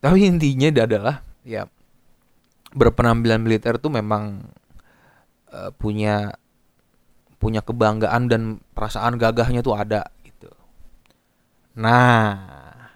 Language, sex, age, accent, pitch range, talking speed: Indonesian, male, 20-39, native, 110-145 Hz, 90 wpm